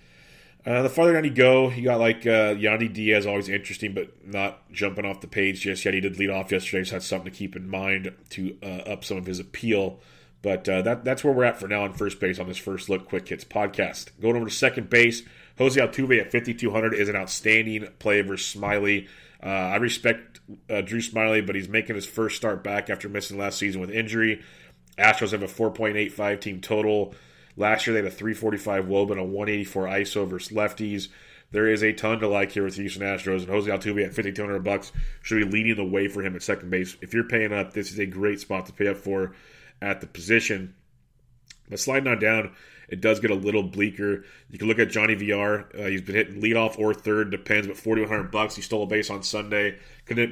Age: 30-49